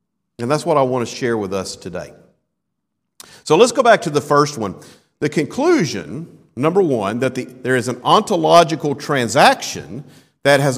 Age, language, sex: 50-69, English, male